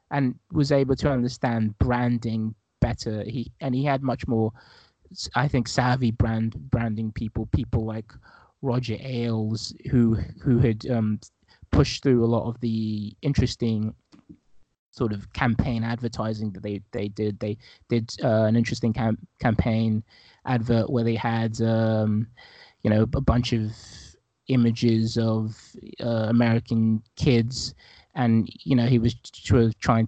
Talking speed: 140 wpm